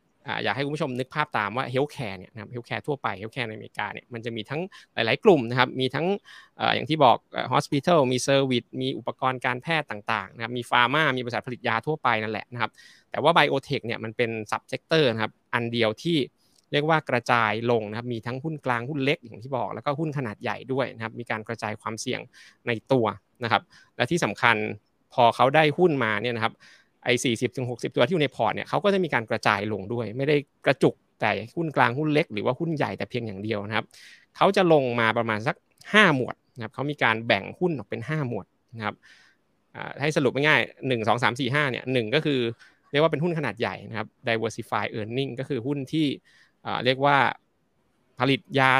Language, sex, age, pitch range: Thai, male, 20-39, 115-145 Hz